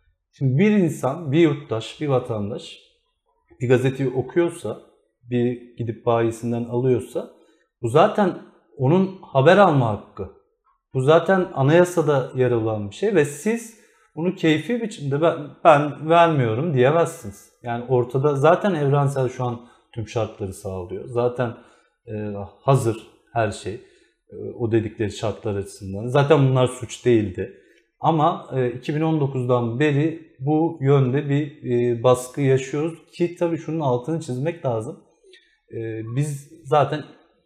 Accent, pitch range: native, 120-165 Hz